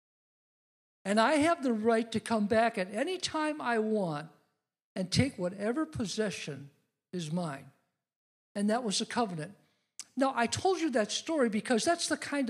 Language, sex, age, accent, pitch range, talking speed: English, male, 60-79, American, 210-305 Hz, 165 wpm